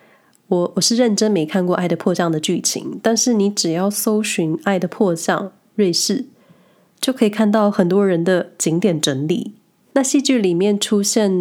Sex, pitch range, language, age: female, 175-215 Hz, Chinese, 20-39